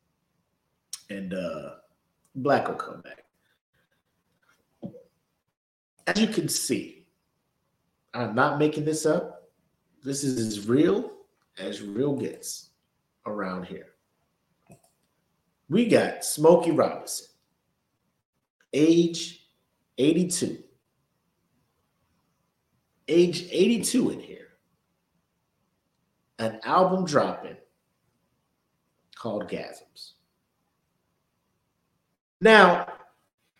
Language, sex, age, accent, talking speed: English, male, 50-69, American, 70 wpm